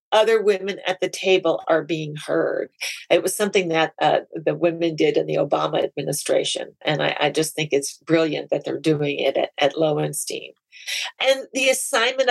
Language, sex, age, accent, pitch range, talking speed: English, female, 40-59, American, 165-200 Hz, 180 wpm